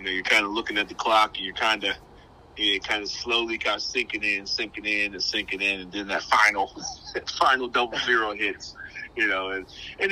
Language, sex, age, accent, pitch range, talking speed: English, male, 30-49, American, 95-125 Hz, 245 wpm